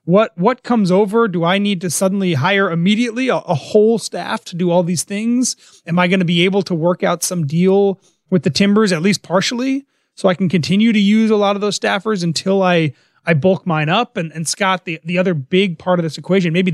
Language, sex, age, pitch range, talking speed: English, male, 30-49, 160-200 Hz, 235 wpm